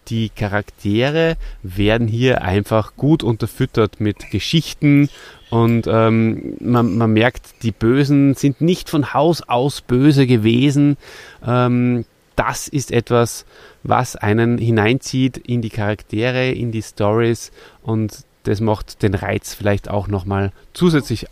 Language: German